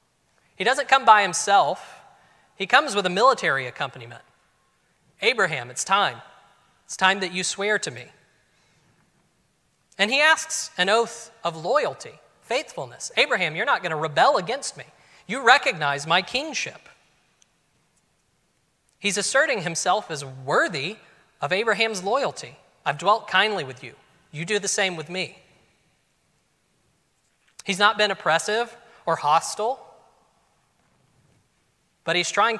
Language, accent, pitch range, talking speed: English, American, 160-225 Hz, 125 wpm